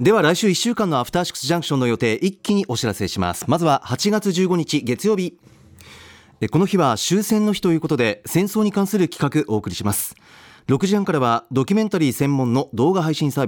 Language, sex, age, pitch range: Japanese, male, 40-59, 120-180 Hz